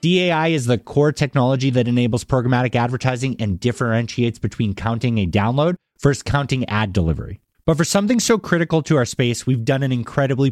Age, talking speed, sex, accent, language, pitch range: 30-49, 175 wpm, male, American, English, 110-150 Hz